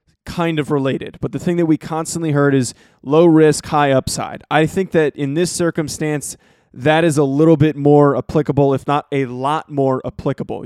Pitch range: 135-160 Hz